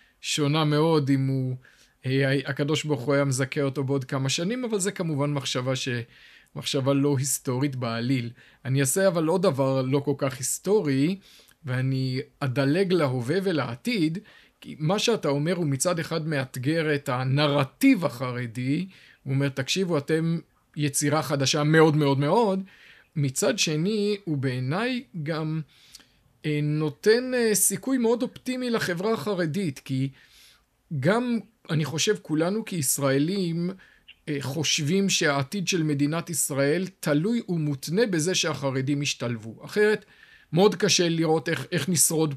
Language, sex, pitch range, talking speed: Hebrew, male, 140-185 Hz, 125 wpm